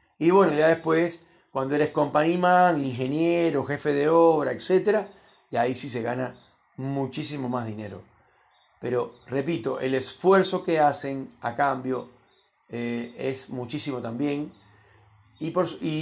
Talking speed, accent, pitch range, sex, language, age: 130 wpm, Argentinian, 125-170 Hz, male, Spanish, 40-59